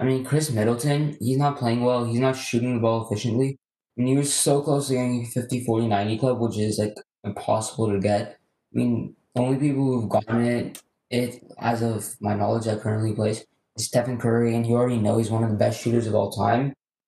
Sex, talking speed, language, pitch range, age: male, 225 wpm, English, 110-130 Hz, 20-39